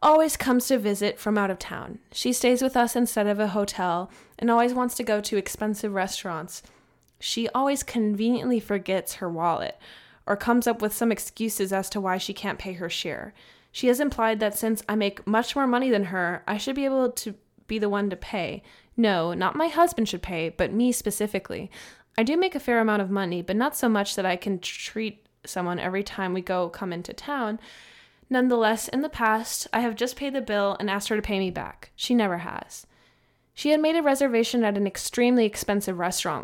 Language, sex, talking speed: English, female, 210 wpm